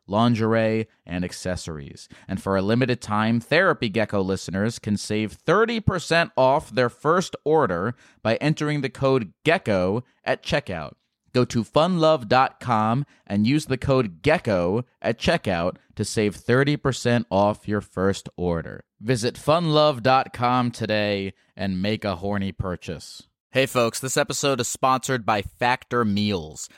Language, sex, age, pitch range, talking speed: English, male, 30-49, 105-140 Hz, 130 wpm